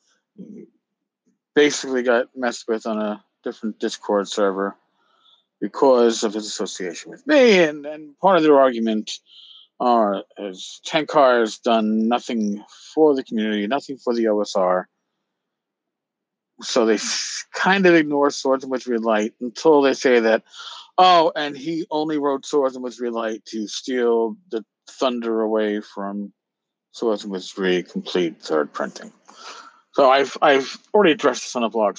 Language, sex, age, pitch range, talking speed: English, male, 50-69, 110-165 Hz, 145 wpm